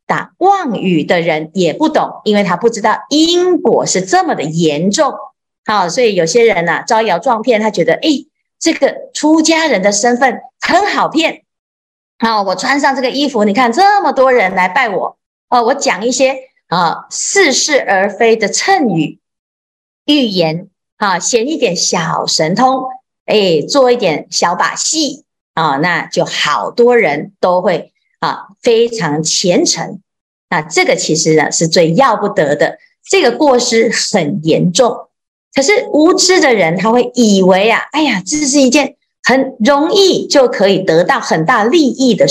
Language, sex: Chinese, female